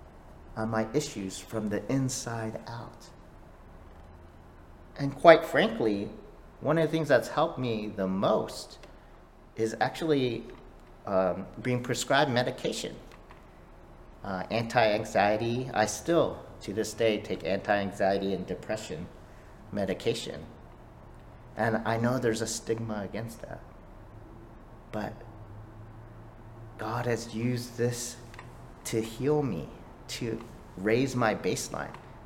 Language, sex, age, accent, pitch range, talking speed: English, male, 50-69, American, 95-120 Hz, 105 wpm